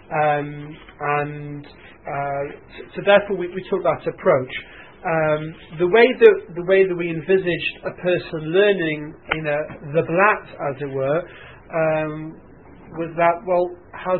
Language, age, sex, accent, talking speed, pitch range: English, 40-59, male, British, 140 wpm, 150-175 Hz